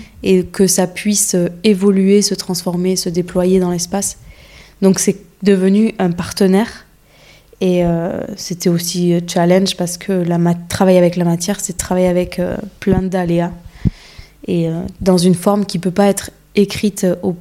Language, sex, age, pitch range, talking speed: French, female, 20-39, 175-195 Hz, 165 wpm